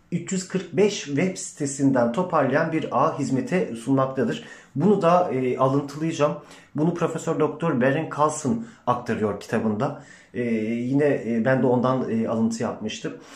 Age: 40-59